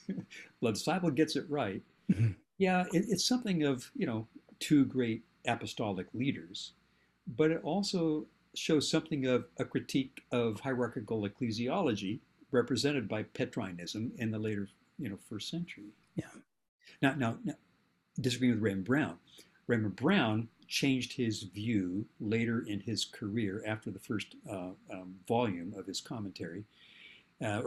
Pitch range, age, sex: 105-140 Hz, 60-79, male